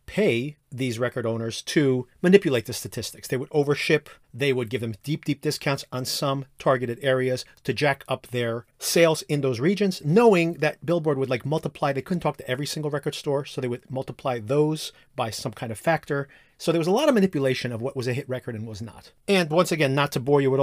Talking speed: 225 wpm